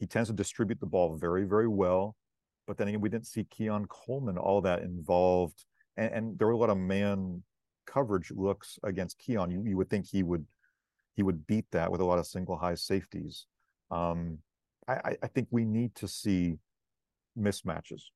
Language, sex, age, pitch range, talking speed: English, male, 40-59, 90-105 Hz, 190 wpm